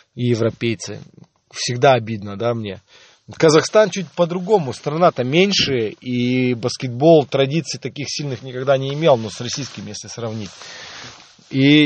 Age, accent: 20-39, native